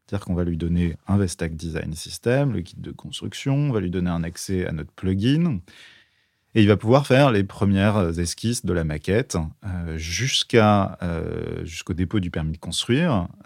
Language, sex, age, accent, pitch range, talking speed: French, male, 30-49, French, 85-110 Hz, 180 wpm